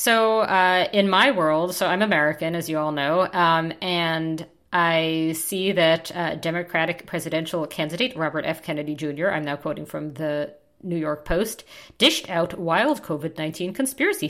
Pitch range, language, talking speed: 160-215 Hz, English, 160 wpm